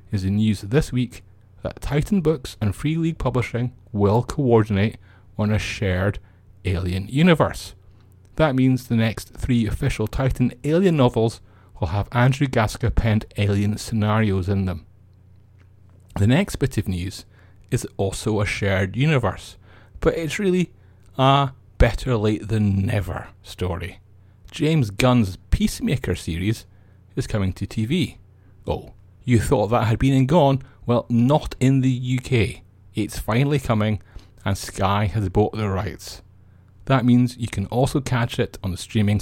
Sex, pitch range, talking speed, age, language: male, 95-125 Hz, 145 wpm, 30-49, English